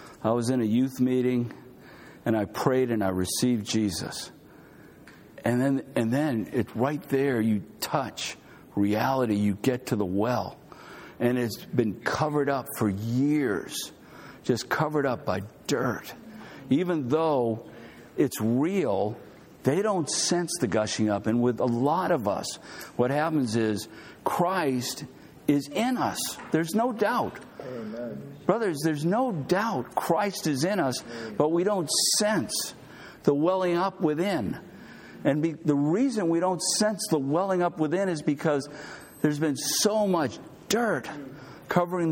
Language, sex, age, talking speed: English, male, 60-79, 140 wpm